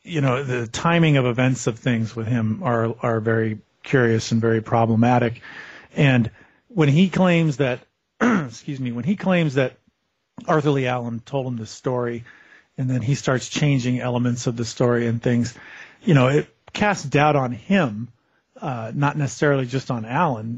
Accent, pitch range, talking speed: American, 120-150 Hz, 170 wpm